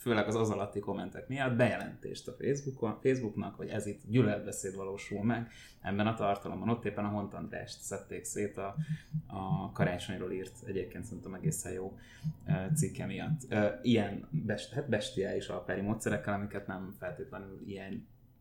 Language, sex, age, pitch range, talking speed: Hungarian, male, 20-39, 100-120 Hz, 140 wpm